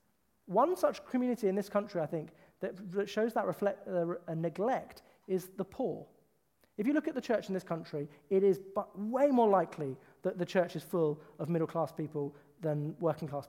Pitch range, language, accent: 175-230 Hz, English, British